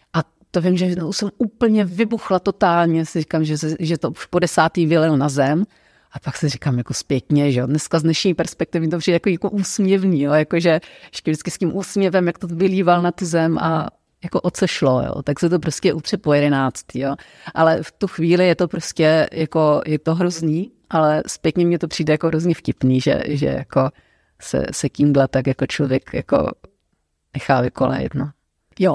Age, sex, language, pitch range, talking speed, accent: 40-59, female, Czech, 150-175 Hz, 185 wpm, native